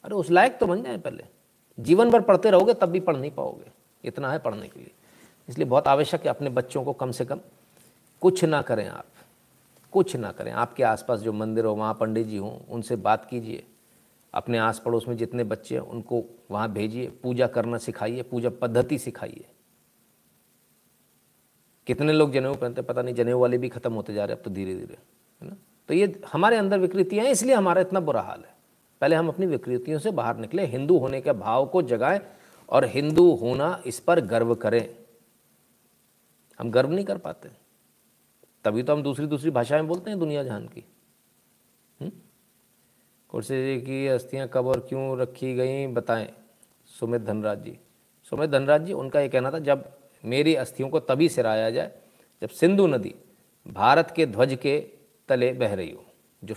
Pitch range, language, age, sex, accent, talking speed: 120-160 Hz, Hindi, 50-69, male, native, 180 wpm